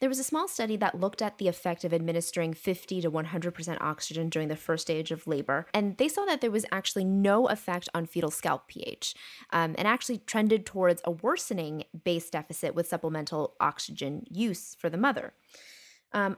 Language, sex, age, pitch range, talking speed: English, female, 20-39, 170-210 Hz, 190 wpm